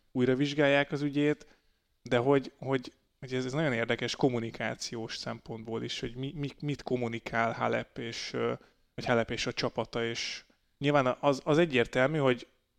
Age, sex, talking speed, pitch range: 30-49, male, 135 wpm, 120-150 Hz